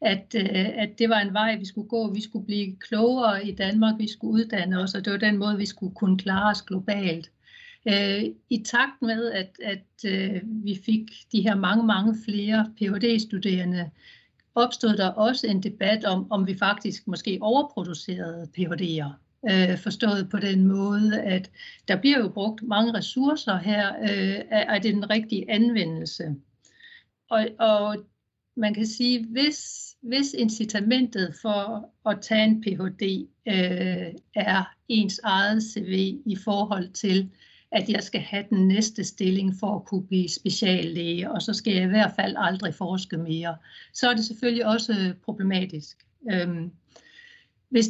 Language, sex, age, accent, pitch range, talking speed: Danish, female, 60-79, native, 190-220 Hz, 155 wpm